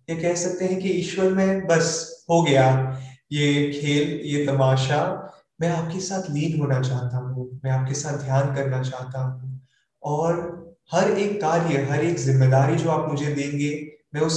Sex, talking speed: male, 80 wpm